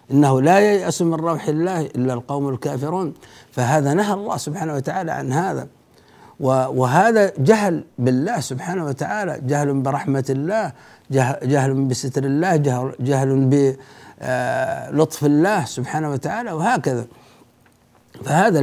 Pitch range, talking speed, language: 140-200 Hz, 110 wpm, Arabic